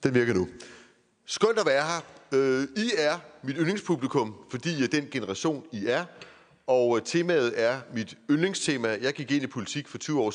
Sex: male